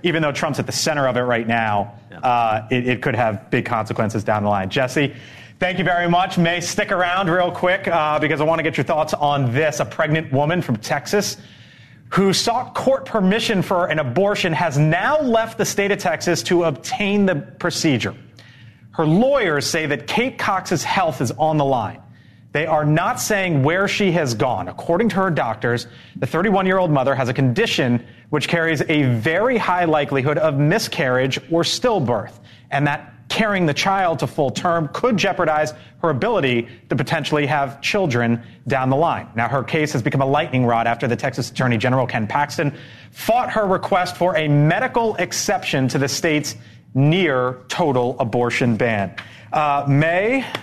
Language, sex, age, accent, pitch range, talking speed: English, male, 30-49, American, 125-175 Hz, 180 wpm